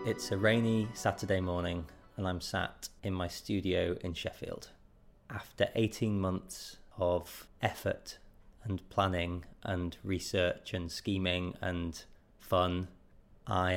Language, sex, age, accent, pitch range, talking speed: English, male, 20-39, British, 85-100 Hz, 120 wpm